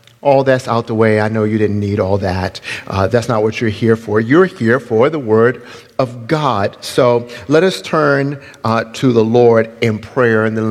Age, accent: 50-69, American